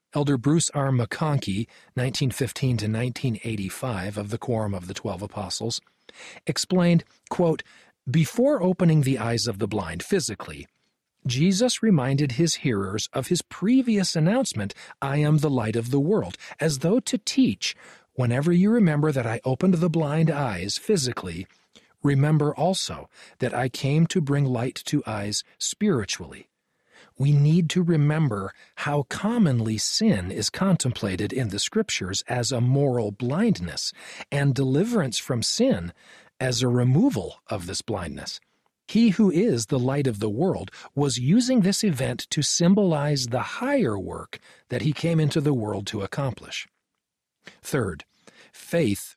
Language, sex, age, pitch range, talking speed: English, male, 40-59, 120-170 Hz, 140 wpm